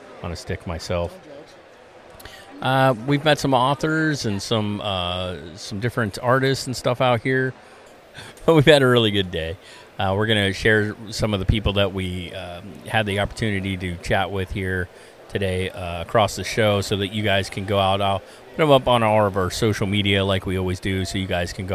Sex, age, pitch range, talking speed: male, 40-59, 95-110 Hz, 210 wpm